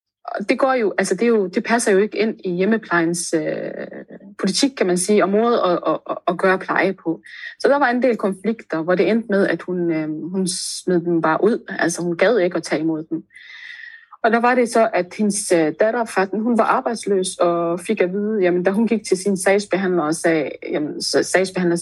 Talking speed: 215 wpm